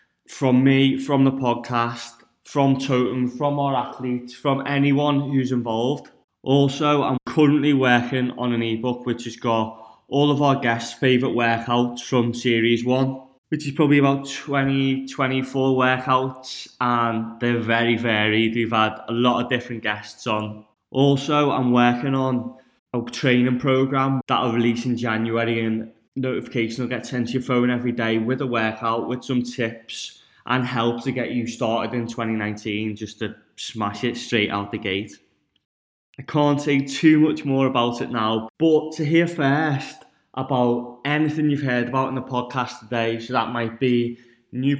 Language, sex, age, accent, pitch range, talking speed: English, male, 10-29, British, 115-135 Hz, 165 wpm